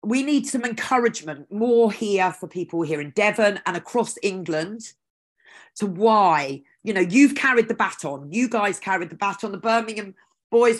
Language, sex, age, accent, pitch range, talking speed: English, female, 40-59, British, 185-240 Hz, 170 wpm